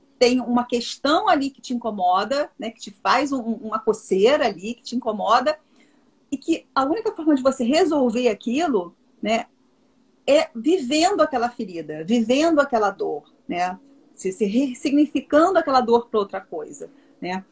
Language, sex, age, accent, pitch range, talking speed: Portuguese, female, 40-59, Brazilian, 225-280 Hz, 155 wpm